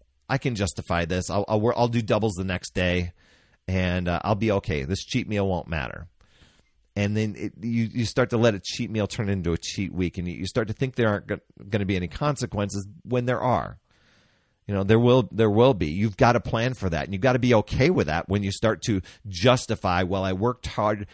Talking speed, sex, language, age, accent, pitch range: 235 wpm, male, English, 40-59, American, 90-120 Hz